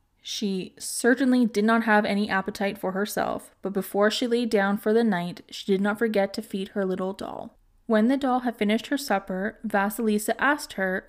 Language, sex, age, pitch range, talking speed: English, female, 20-39, 195-225 Hz, 195 wpm